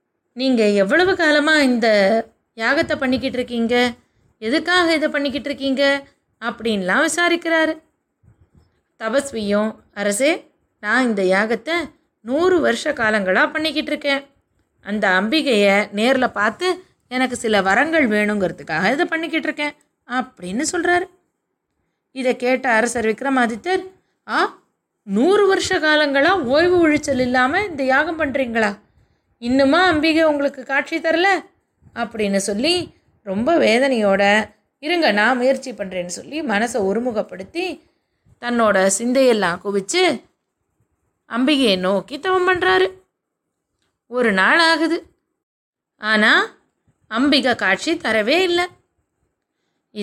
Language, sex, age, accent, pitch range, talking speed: Tamil, female, 20-39, native, 215-315 Hz, 95 wpm